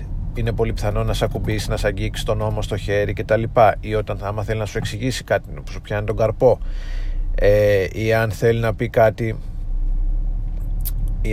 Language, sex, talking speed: Greek, male, 195 wpm